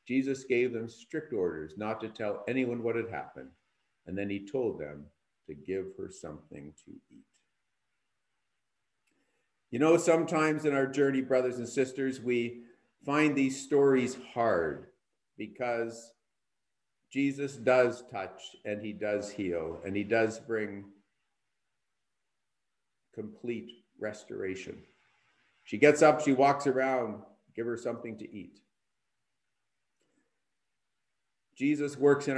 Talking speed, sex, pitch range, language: 120 wpm, male, 105-130 Hz, English